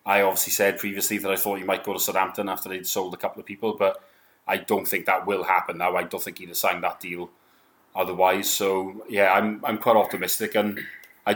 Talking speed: 230 wpm